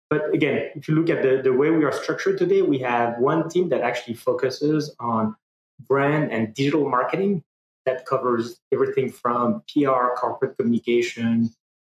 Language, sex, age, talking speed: English, male, 20-39, 165 wpm